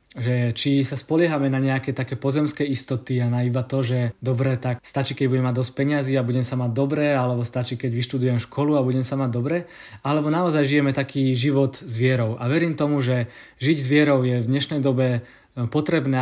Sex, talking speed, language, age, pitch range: male, 205 wpm, Czech, 20-39, 125-145 Hz